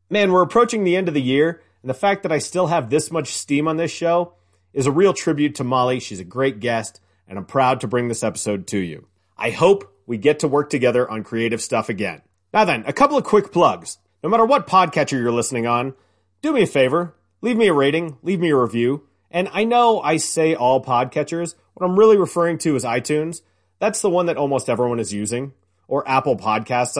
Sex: male